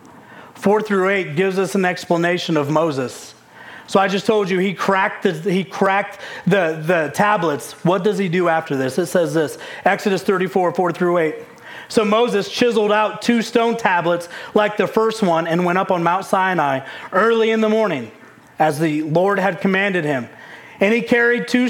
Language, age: English, 40-59